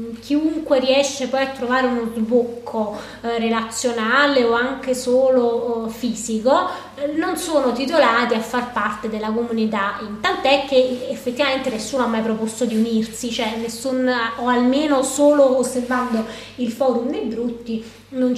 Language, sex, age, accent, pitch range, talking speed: Italian, female, 20-39, native, 225-260 Hz, 140 wpm